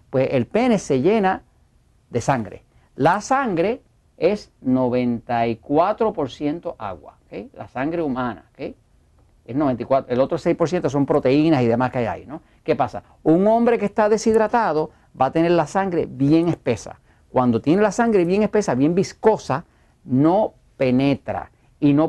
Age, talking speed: 50-69, 150 wpm